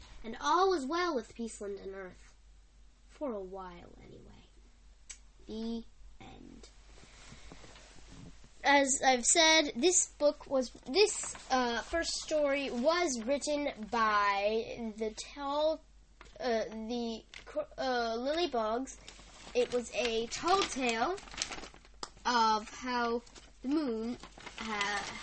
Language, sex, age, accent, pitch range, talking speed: English, female, 10-29, American, 215-280 Hz, 100 wpm